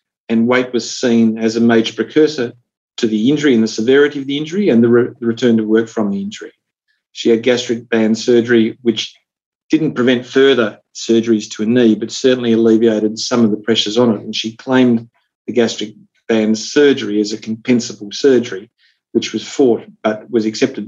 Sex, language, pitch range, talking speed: male, English, 110-135 Hz, 185 wpm